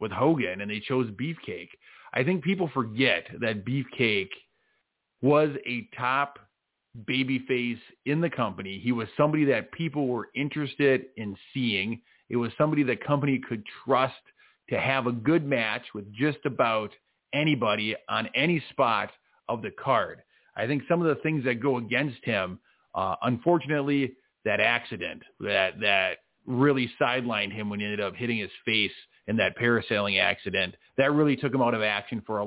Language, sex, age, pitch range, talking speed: English, male, 40-59, 115-145 Hz, 165 wpm